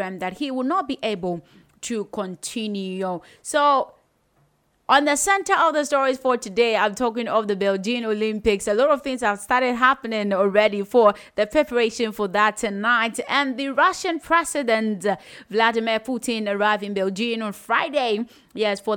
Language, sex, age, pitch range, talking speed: English, female, 20-39, 195-245 Hz, 160 wpm